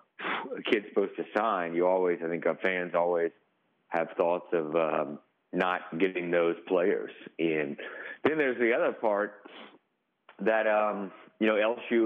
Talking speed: 155 wpm